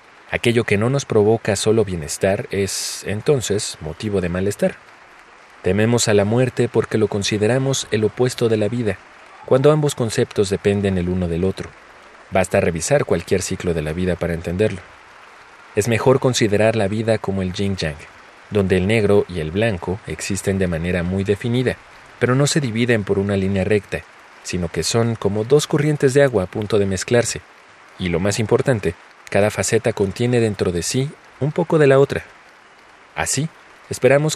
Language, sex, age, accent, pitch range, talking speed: Spanish, male, 40-59, Mexican, 95-120 Hz, 170 wpm